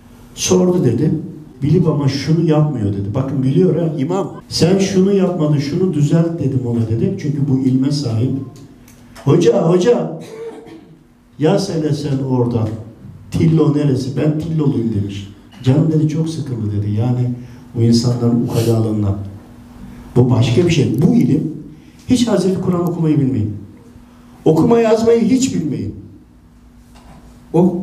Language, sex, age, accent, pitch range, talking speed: Turkish, male, 50-69, native, 120-160 Hz, 130 wpm